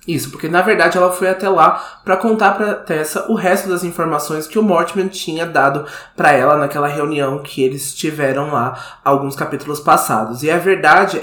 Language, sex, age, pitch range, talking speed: Portuguese, male, 20-39, 150-185 Hz, 185 wpm